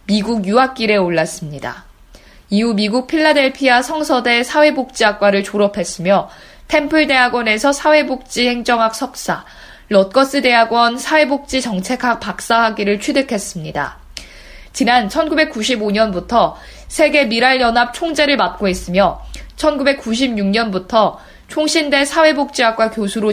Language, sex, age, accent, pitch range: Korean, female, 20-39, native, 205-270 Hz